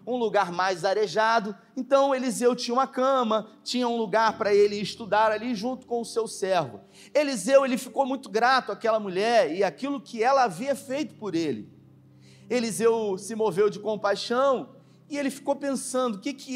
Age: 30-49